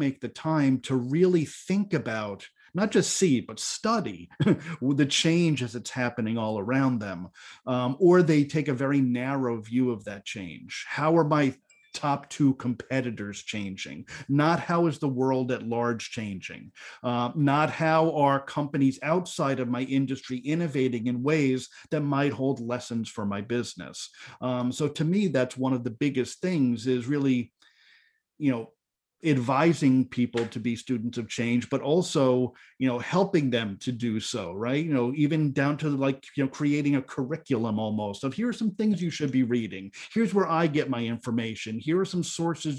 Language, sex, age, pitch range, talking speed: English, male, 40-59, 125-155 Hz, 180 wpm